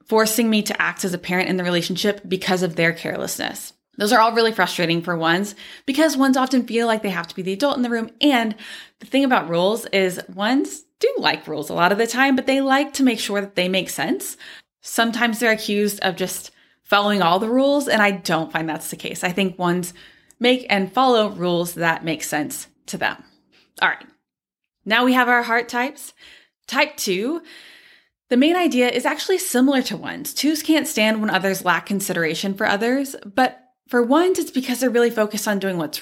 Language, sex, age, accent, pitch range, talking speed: English, female, 20-39, American, 185-260 Hz, 210 wpm